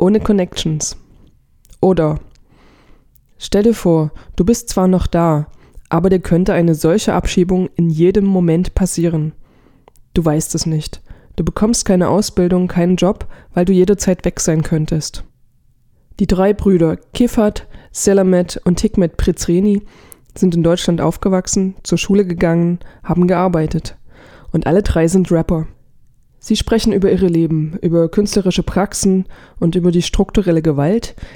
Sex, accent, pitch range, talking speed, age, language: female, German, 165-195 Hz, 140 wpm, 20-39, German